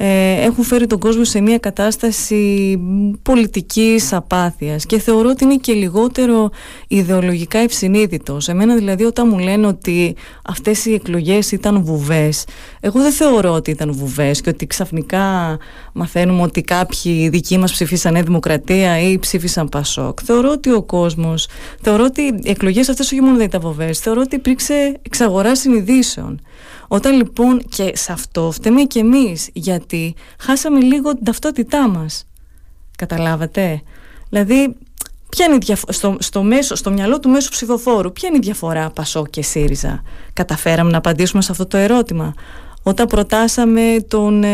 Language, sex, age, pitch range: Greek, female, 30-49, 175-235 Hz